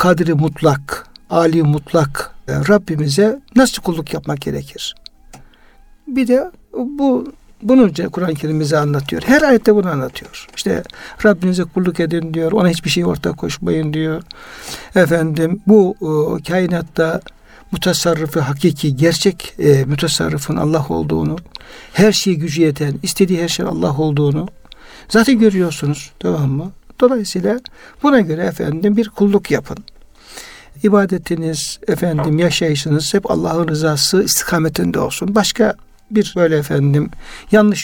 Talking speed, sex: 120 wpm, male